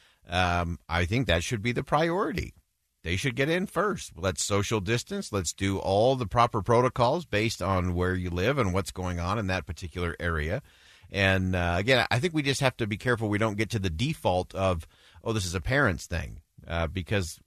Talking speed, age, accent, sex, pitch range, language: 210 wpm, 40-59, American, male, 90-120 Hz, English